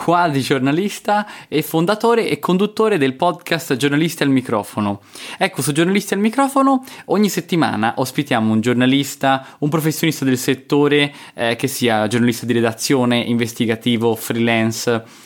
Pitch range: 120-155 Hz